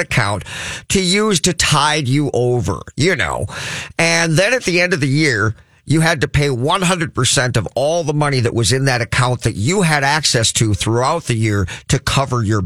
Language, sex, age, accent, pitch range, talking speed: English, male, 50-69, American, 105-145 Hz, 200 wpm